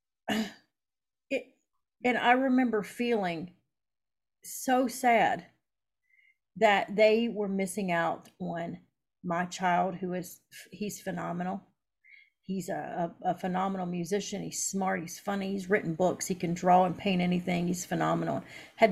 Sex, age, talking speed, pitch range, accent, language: female, 40-59, 125 wpm, 180-240 Hz, American, English